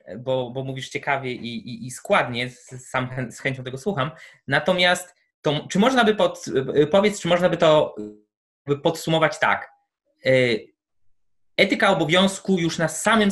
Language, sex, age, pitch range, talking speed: Polish, male, 20-39, 135-180 Hz, 145 wpm